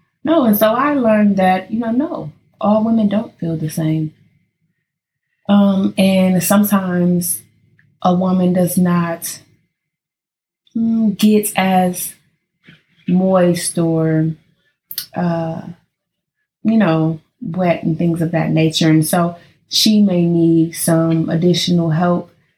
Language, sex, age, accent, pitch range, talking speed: English, female, 20-39, American, 165-205 Hz, 115 wpm